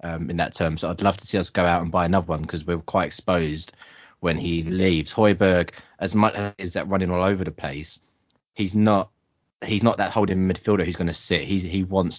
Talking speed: 230 wpm